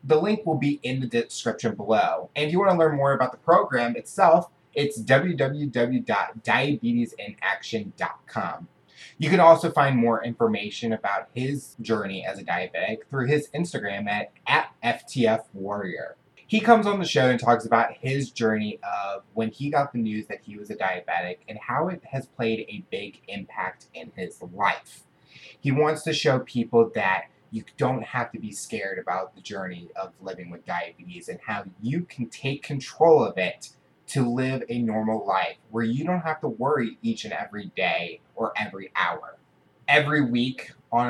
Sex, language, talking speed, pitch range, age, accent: male, English, 175 wpm, 115-150 Hz, 20-39, American